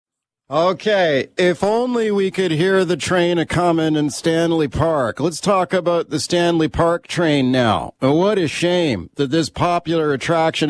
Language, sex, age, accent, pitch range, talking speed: English, male, 40-59, American, 135-165 Hz, 155 wpm